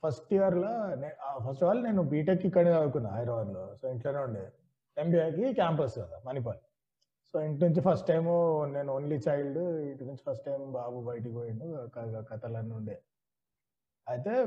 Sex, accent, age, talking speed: male, native, 30-49, 155 wpm